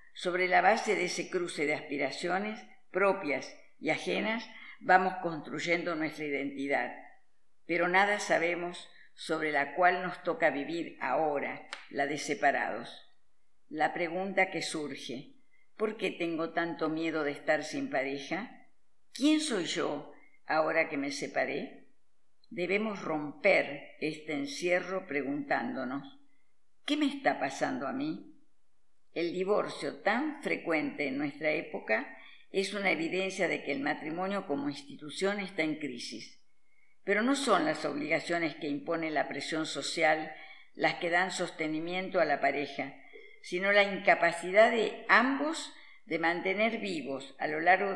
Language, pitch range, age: Spanish, 155-210 Hz, 50-69